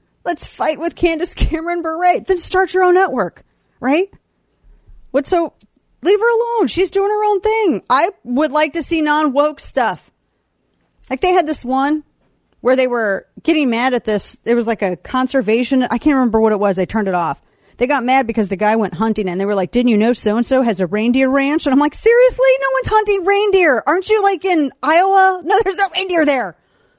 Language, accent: English, American